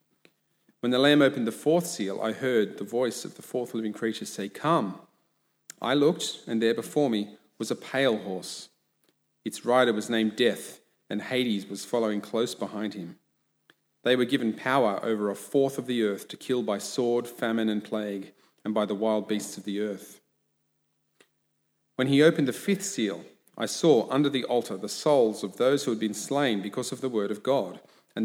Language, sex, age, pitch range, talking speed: English, male, 40-59, 105-125 Hz, 195 wpm